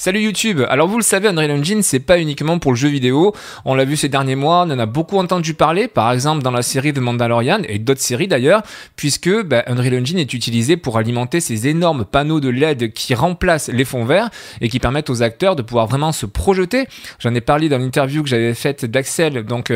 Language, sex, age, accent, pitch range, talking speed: French, male, 20-39, French, 125-165 Hz, 230 wpm